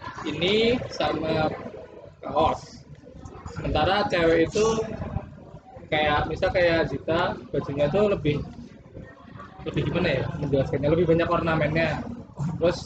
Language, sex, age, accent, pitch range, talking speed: Indonesian, male, 20-39, native, 125-170 Hz, 95 wpm